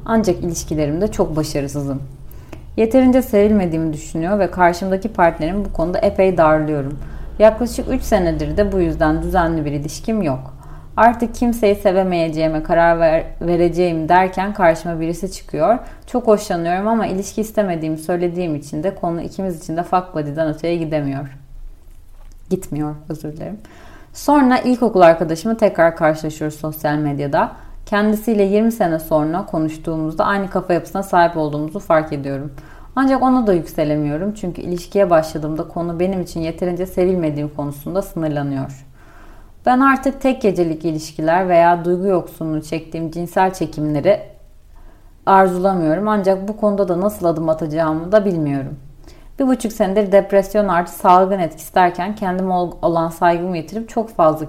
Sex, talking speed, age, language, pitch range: female, 130 wpm, 30-49, Turkish, 155-200 Hz